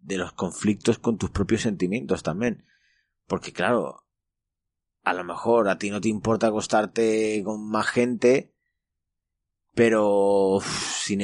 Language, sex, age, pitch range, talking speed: Spanish, male, 30-49, 100-120 Hz, 130 wpm